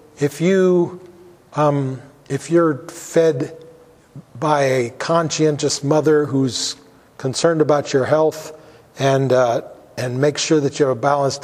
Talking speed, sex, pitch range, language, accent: 130 wpm, male, 140-170 Hz, English, American